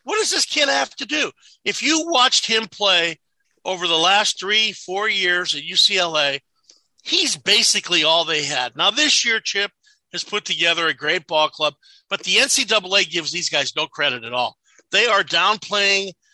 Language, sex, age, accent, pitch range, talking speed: English, male, 50-69, American, 175-230 Hz, 180 wpm